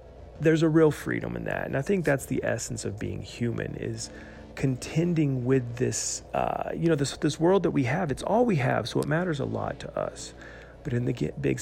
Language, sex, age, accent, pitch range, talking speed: English, male, 40-59, American, 105-140 Hz, 220 wpm